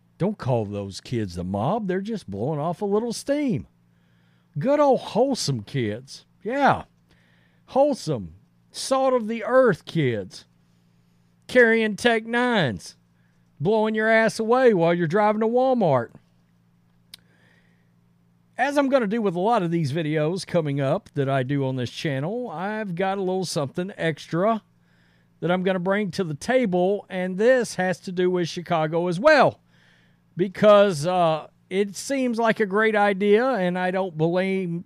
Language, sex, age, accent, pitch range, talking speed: English, male, 50-69, American, 135-205 Hz, 155 wpm